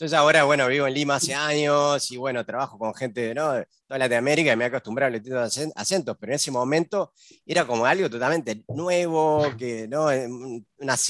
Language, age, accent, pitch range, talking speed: English, 30-49, Argentinian, 120-160 Hz, 200 wpm